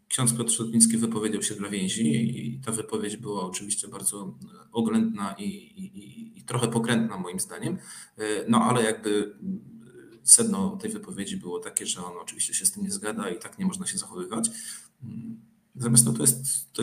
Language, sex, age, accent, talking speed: Polish, male, 40-59, native, 170 wpm